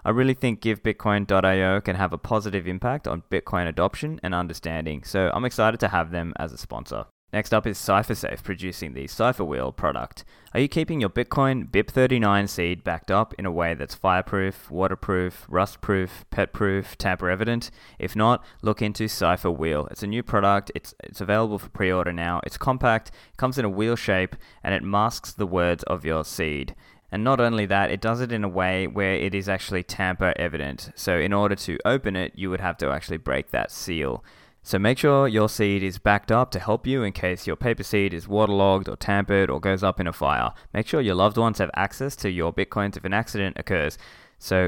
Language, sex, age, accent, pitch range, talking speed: English, male, 20-39, Australian, 90-110 Hz, 205 wpm